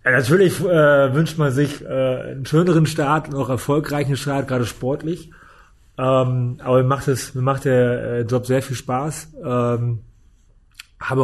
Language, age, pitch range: German, 30-49, 120-135 Hz